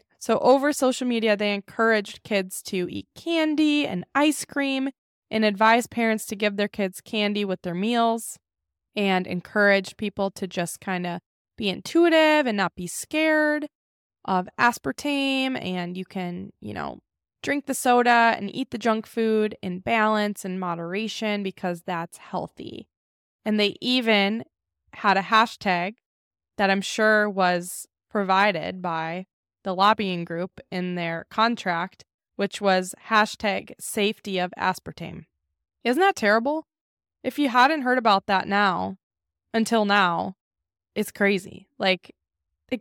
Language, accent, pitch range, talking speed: English, American, 185-225 Hz, 135 wpm